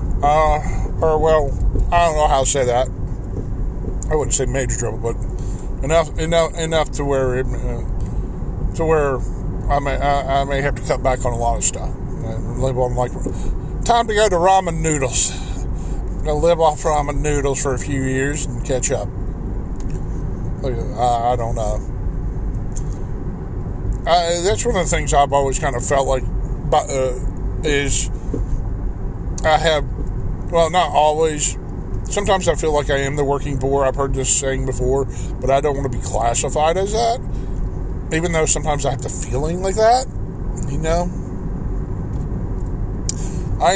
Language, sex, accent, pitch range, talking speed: English, male, American, 110-150 Hz, 165 wpm